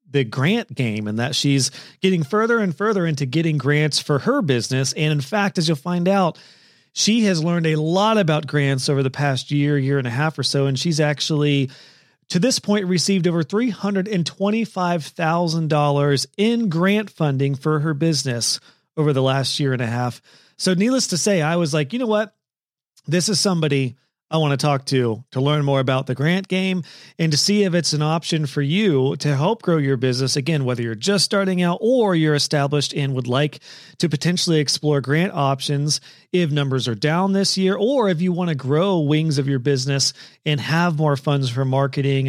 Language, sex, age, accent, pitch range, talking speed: English, male, 40-59, American, 140-180 Hz, 200 wpm